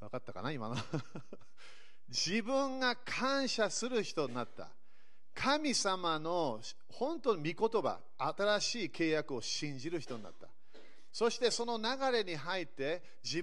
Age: 40-59